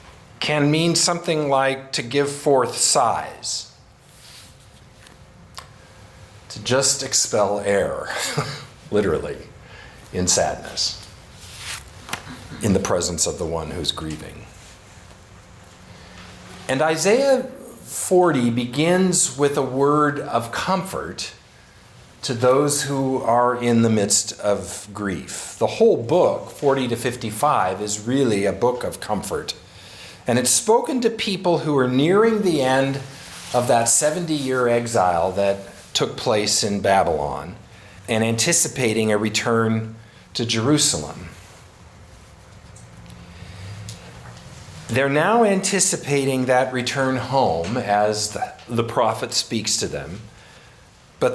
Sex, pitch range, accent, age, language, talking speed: male, 100-145 Hz, American, 50-69, English, 105 wpm